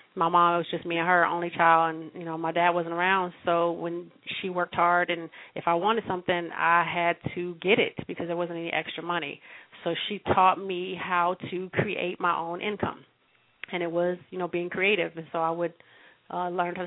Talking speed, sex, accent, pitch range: 220 wpm, female, American, 170-190 Hz